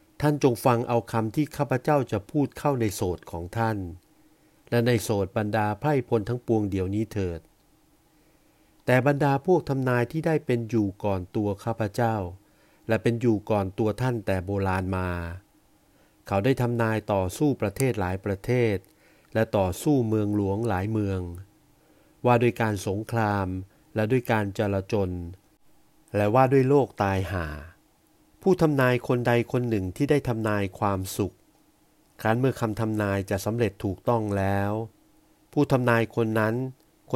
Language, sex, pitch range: Thai, male, 100-125 Hz